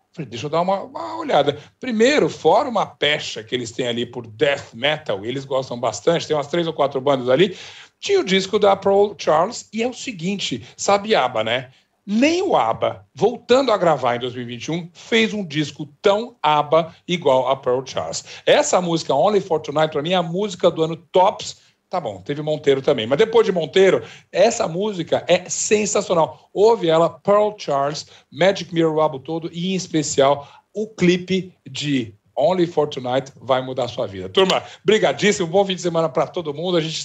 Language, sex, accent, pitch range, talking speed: Portuguese, male, Brazilian, 140-195 Hz, 190 wpm